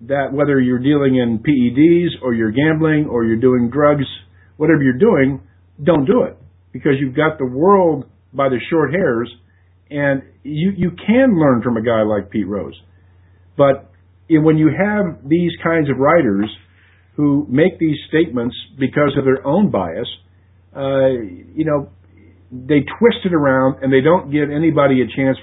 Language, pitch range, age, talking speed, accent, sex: English, 100-145 Hz, 50-69, 170 wpm, American, male